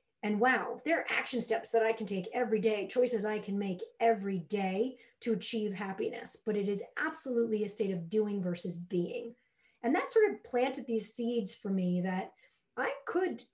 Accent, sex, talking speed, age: American, female, 190 wpm, 40-59